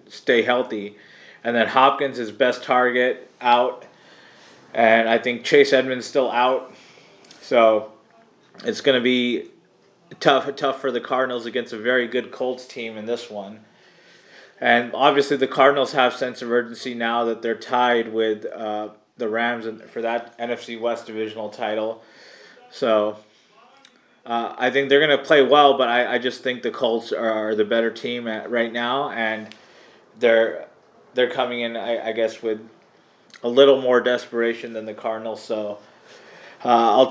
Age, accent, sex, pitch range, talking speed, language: 30-49, American, male, 115-130 Hz, 160 wpm, English